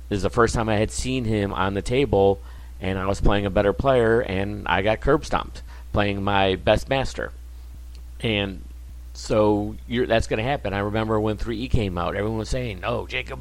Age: 50-69